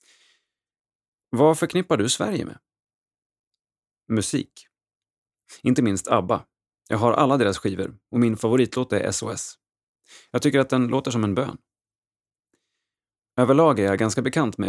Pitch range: 105-135 Hz